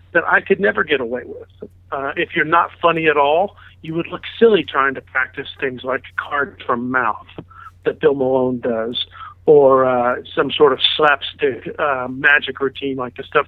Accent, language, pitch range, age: American, English, 125-160 Hz, 50-69